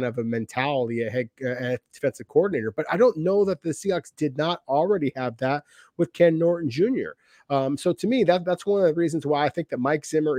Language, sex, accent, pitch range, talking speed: English, male, American, 120-145 Hz, 220 wpm